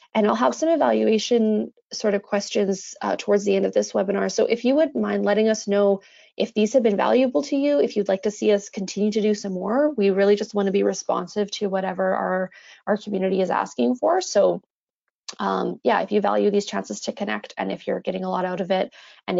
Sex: female